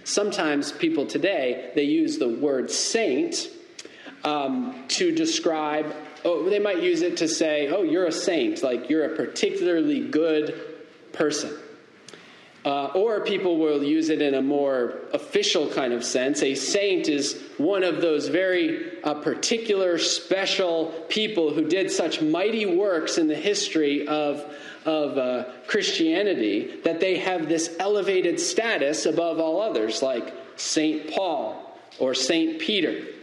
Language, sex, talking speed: English, male, 140 wpm